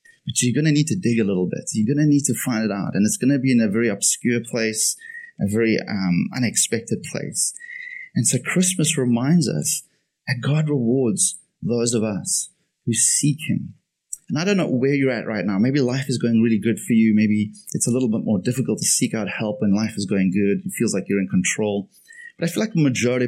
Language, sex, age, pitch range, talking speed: English, male, 30-49, 110-170 Hz, 235 wpm